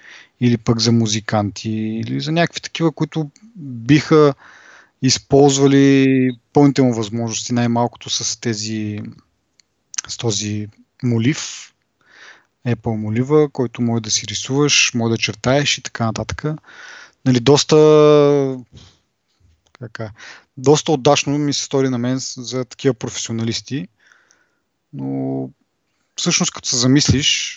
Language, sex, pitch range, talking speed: Bulgarian, male, 115-145 Hz, 110 wpm